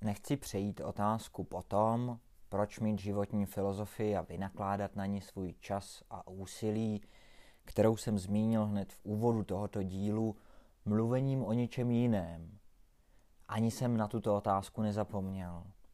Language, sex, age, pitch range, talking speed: Czech, male, 20-39, 95-115 Hz, 130 wpm